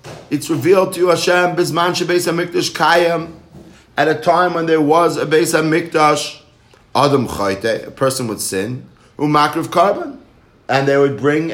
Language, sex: English, male